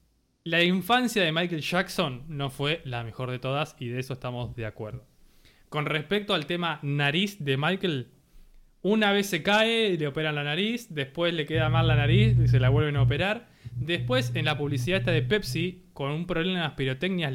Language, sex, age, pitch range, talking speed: Spanish, male, 20-39, 135-180 Hz, 195 wpm